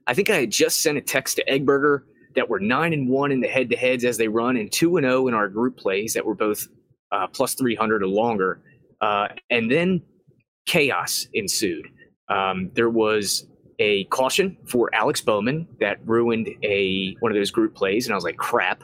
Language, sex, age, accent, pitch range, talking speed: English, male, 30-49, American, 110-135 Hz, 205 wpm